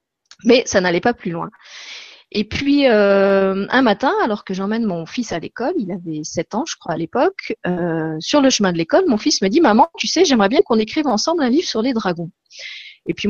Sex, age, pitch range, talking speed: female, 30-49, 185-270 Hz, 230 wpm